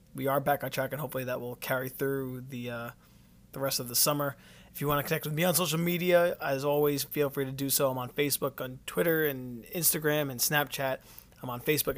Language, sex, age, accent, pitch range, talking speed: English, male, 20-39, American, 130-150 Hz, 235 wpm